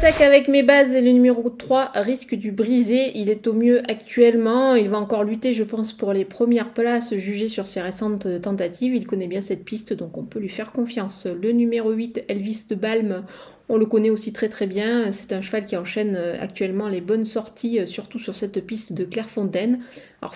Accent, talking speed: French, 205 wpm